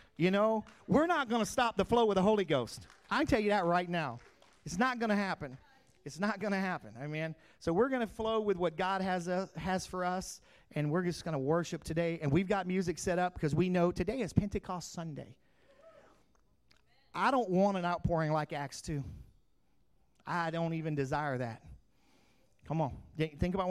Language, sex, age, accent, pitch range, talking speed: English, male, 40-59, American, 145-195 Hz, 210 wpm